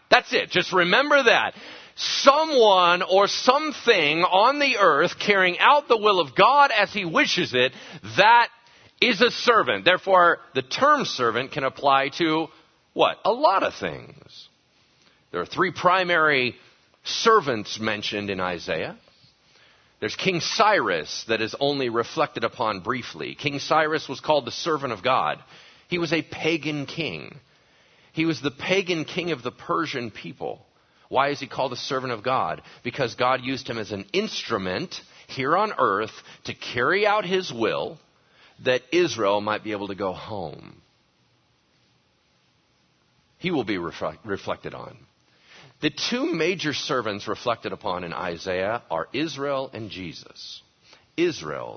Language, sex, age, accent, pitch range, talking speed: English, male, 40-59, American, 125-190 Hz, 145 wpm